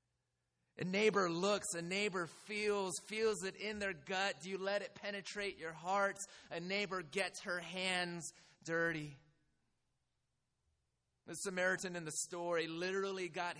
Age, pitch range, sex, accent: 30-49, 150-185 Hz, male, American